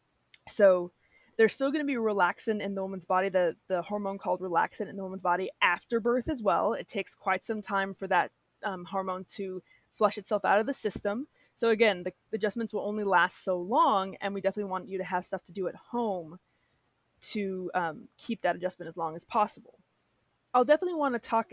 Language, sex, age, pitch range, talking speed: English, female, 20-39, 190-230 Hz, 210 wpm